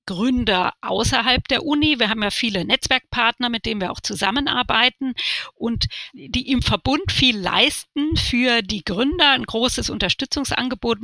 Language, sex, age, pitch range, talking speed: German, female, 40-59, 215-265 Hz, 140 wpm